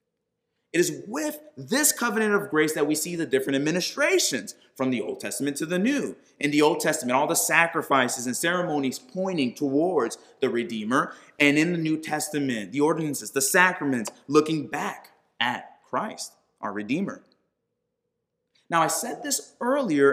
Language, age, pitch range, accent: English, 30-49, 145-225 Hz, American